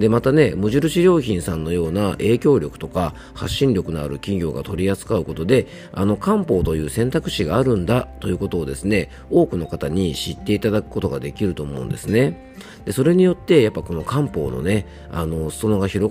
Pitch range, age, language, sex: 80-120 Hz, 40-59, Japanese, male